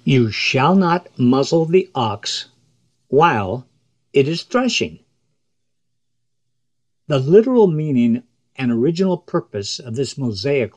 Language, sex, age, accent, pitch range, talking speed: English, male, 60-79, American, 120-145 Hz, 105 wpm